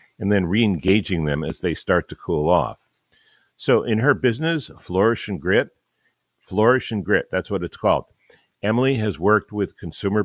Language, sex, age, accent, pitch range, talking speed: English, male, 50-69, American, 85-105 Hz, 170 wpm